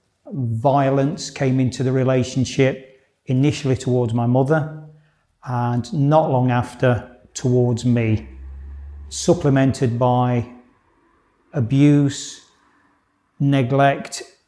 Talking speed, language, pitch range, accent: 80 wpm, English, 120-140 Hz, British